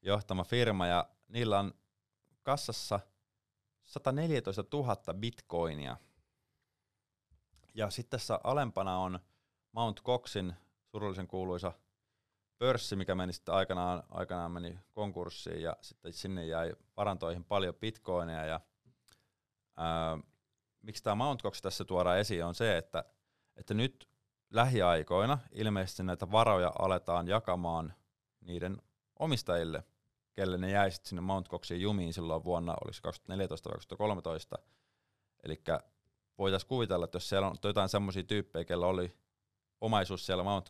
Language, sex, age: Finnish, male, 30-49